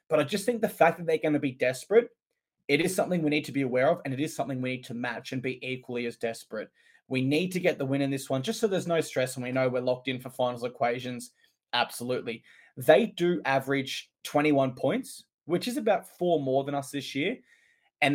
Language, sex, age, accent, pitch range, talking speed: English, male, 20-39, Australian, 130-165 Hz, 240 wpm